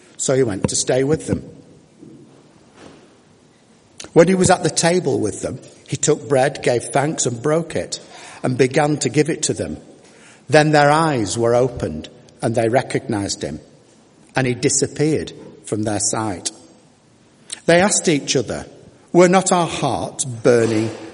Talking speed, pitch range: 155 wpm, 120-150 Hz